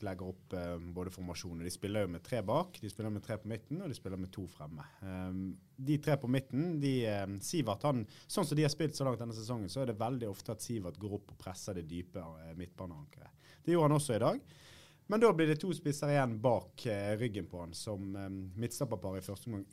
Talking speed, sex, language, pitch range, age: 235 wpm, male, English, 100-140 Hz, 30-49